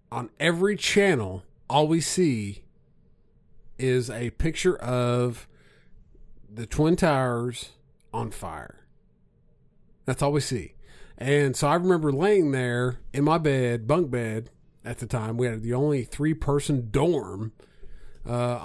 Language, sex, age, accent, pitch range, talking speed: English, male, 40-59, American, 115-150 Hz, 130 wpm